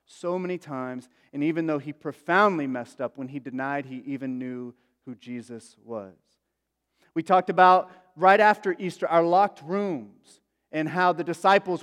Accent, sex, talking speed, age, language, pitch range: American, male, 160 wpm, 30-49, English, 140-185 Hz